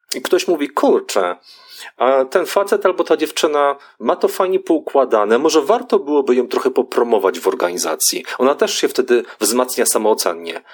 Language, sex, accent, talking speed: Polish, male, native, 150 wpm